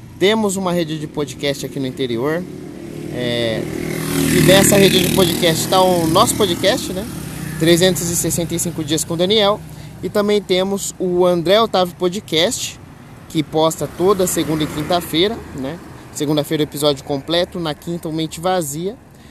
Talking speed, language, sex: 145 wpm, Portuguese, male